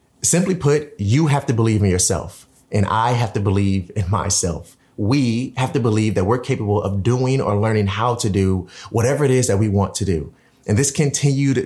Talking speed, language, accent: 205 wpm, English, American